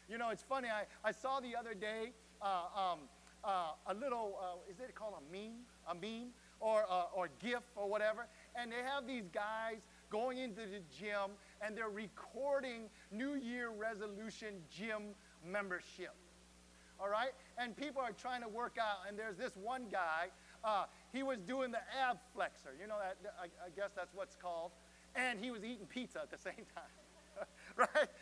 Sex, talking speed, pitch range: male, 180 wpm, 205-270 Hz